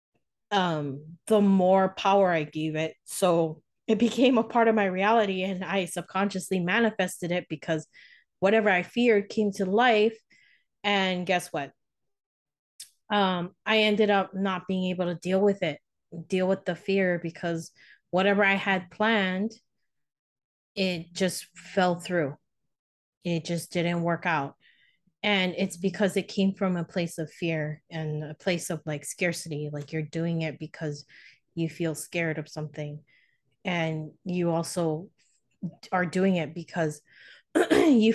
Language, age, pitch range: English, 30-49, 165-195 Hz